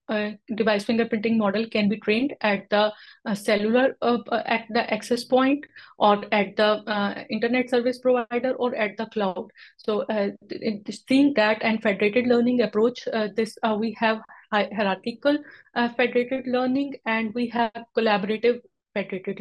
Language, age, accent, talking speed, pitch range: English, 30-49, Indian, 150 wpm, 215-250 Hz